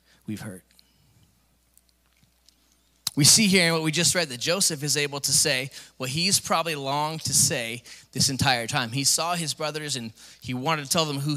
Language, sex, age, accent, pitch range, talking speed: English, male, 20-39, American, 105-145 Hz, 190 wpm